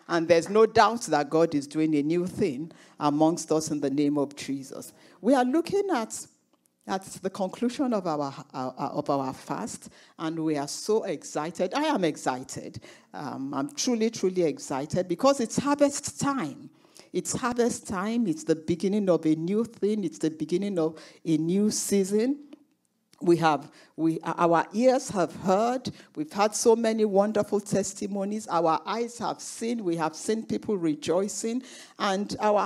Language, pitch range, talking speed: English, 160-220 Hz, 160 wpm